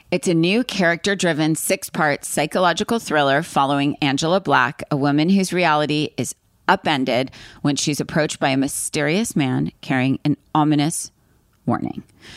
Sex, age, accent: female, 30-49, American